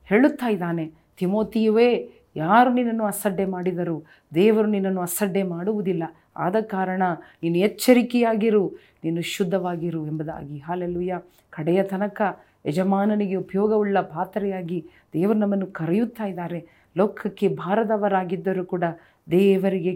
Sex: female